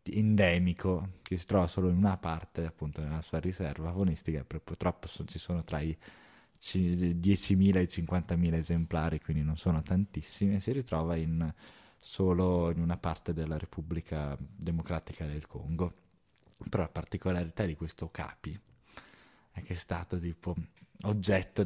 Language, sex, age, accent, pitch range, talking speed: Italian, male, 20-39, native, 80-95 Hz, 145 wpm